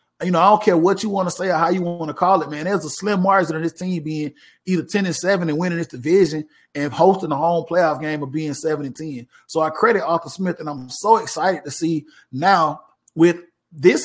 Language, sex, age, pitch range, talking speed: English, male, 30-49, 155-185 Hz, 245 wpm